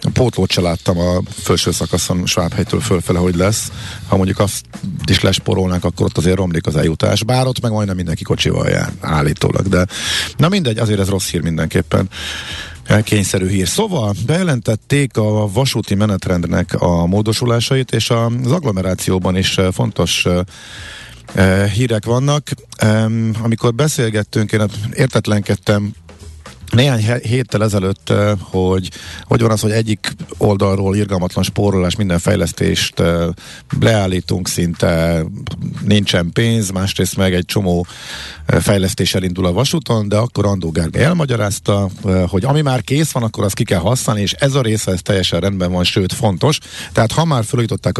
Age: 50-69